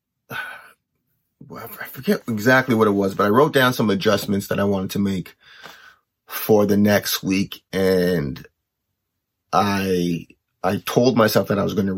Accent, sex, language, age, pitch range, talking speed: American, male, English, 30-49, 100-115 Hz, 155 wpm